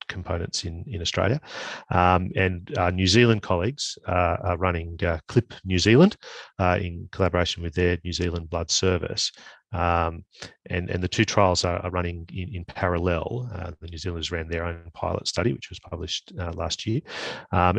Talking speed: 180 wpm